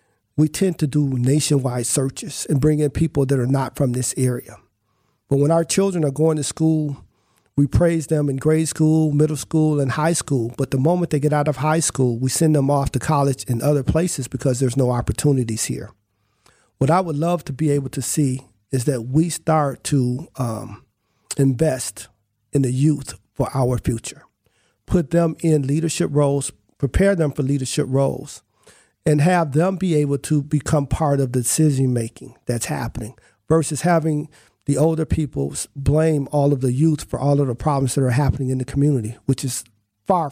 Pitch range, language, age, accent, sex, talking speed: 130-155 Hz, English, 50-69, American, male, 190 wpm